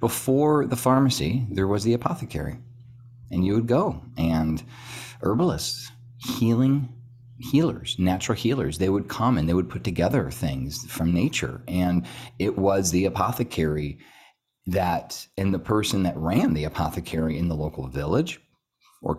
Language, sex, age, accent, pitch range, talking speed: English, male, 40-59, American, 85-120 Hz, 145 wpm